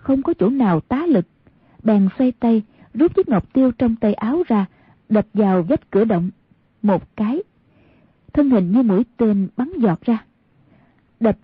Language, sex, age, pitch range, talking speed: Vietnamese, female, 20-39, 200-260 Hz, 175 wpm